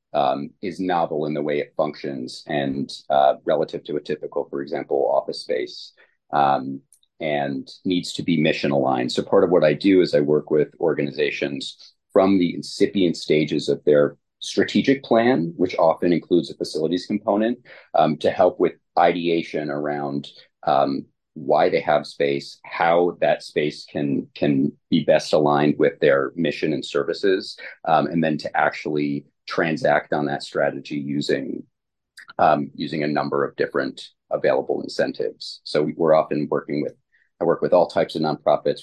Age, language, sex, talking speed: 30-49, English, male, 160 wpm